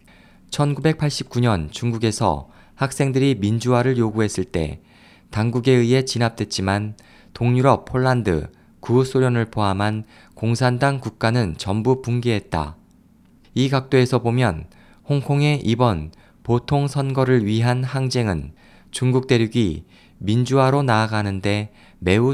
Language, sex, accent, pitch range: Korean, male, native, 105-130 Hz